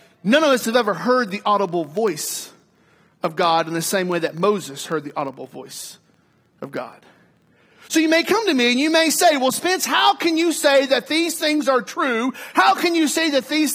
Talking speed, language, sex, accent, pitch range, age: 220 wpm, English, male, American, 195-270 Hz, 40-59